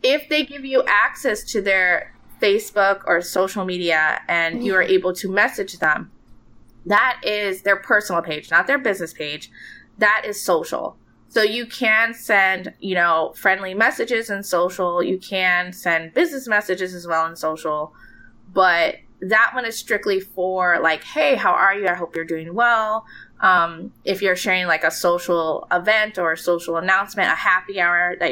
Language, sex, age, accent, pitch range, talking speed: English, female, 20-39, American, 175-215 Hz, 170 wpm